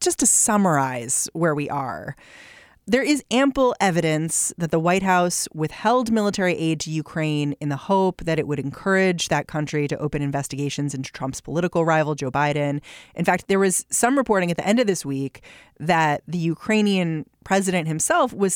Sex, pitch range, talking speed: female, 155-215 Hz, 180 wpm